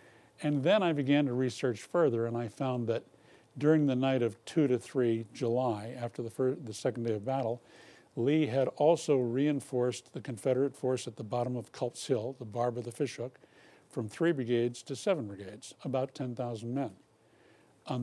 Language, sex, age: English, male, 50-69